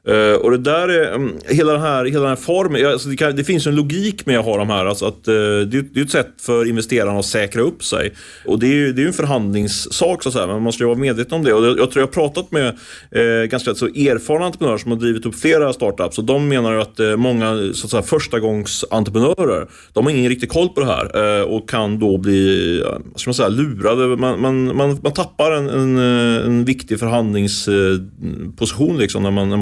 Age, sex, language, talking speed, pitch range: 30-49, male, Swedish, 250 wpm, 110-140 Hz